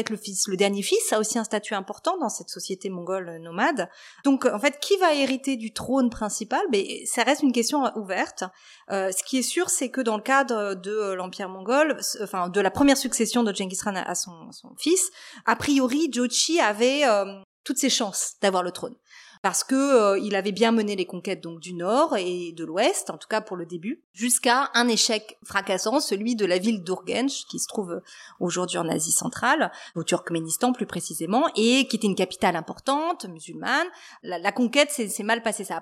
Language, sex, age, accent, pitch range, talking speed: French, female, 30-49, French, 190-255 Hz, 205 wpm